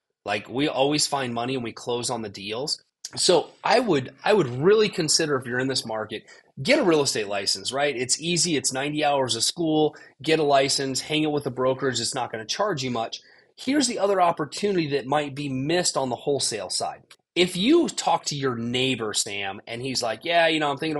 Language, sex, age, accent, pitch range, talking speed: English, male, 30-49, American, 120-155 Hz, 225 wpm